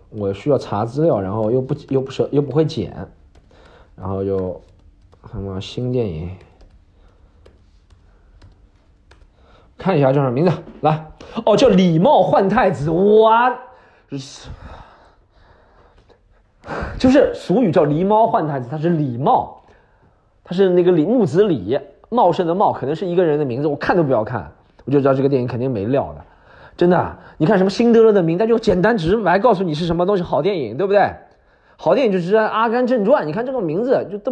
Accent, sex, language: native, male, Chinese